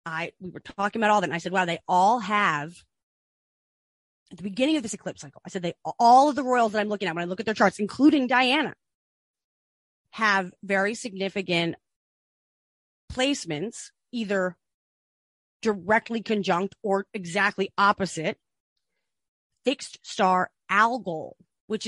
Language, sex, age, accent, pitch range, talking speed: English, female, 30-49, American, 175-225 Hz, 150 wpm